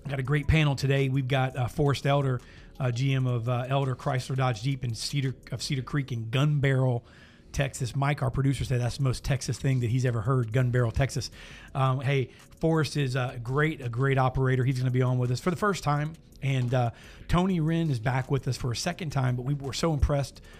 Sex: male